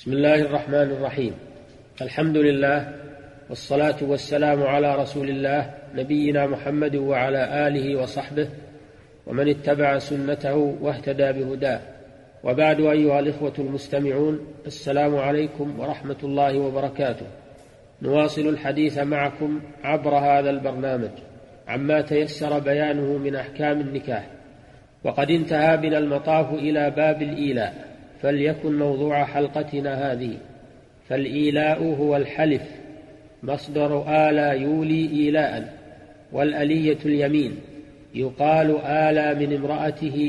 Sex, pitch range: male, 140-150 Hz